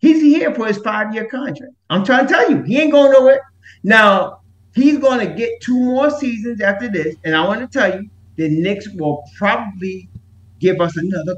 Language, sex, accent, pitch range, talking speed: English, male, American, 150-230 Hz, 200 wpm